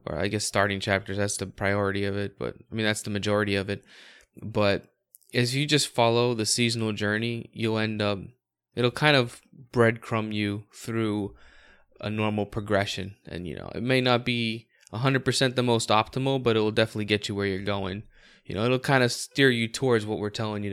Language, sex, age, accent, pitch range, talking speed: English, male, 20-39, American, 105-120 Hz, 205 wpm